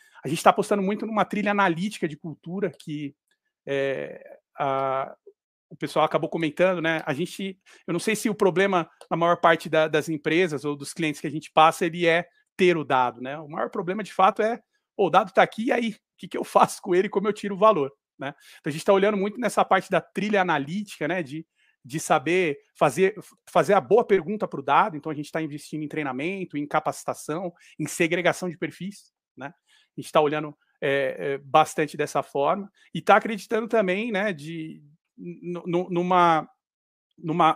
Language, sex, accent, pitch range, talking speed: Portuguese, male, Brazilian, 155-195 Hz, 200 wpm